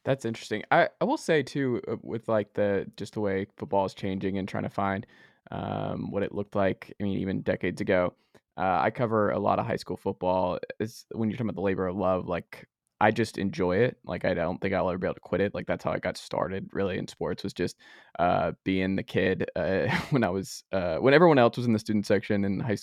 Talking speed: 245 wpm